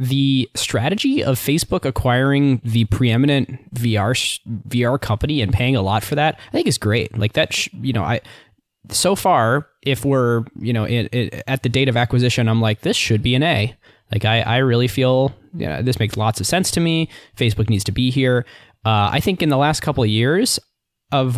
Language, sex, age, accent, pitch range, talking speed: English, male, 20-39, American, 110-135 Hz, 210 wpm